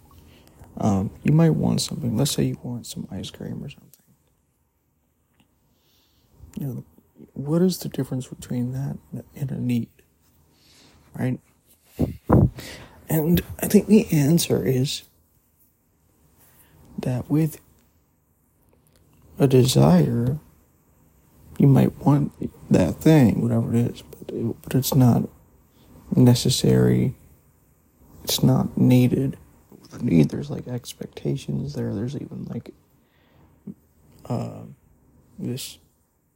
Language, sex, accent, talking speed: English, male, American, 100 wpm